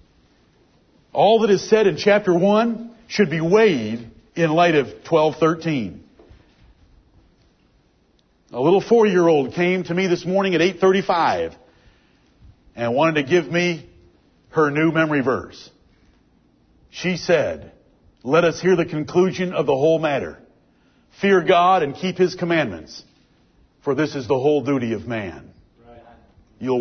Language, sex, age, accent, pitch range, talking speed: English, male, 50-69, American, 115-165 Hz, 130 wpm